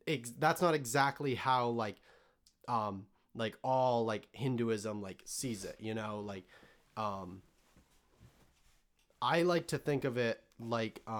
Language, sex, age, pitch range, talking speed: English, male, 30-49, 105-140 Hz, 130 wpm